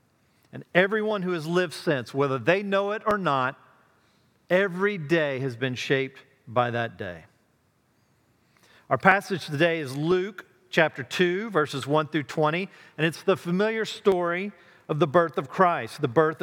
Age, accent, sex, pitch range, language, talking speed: 40-59, American, male, 135-180 Hz, English, 155 wpm